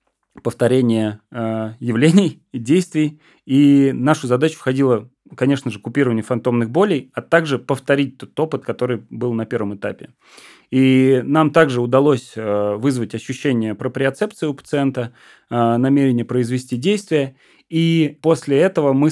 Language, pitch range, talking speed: Russian, 120-145 Hz, 130 wpm